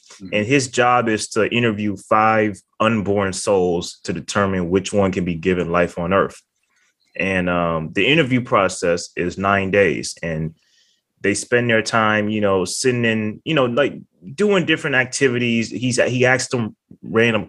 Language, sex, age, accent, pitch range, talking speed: English, male, 20-39, American, 95-125 Hz, 160 wpm